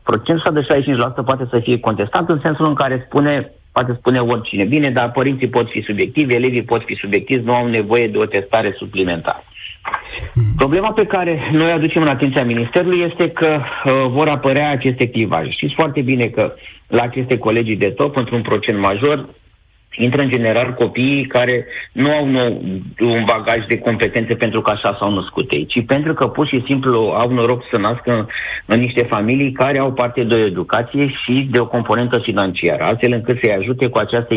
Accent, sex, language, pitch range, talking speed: native, male, Romanian, 110-135 Hz, 185 wpm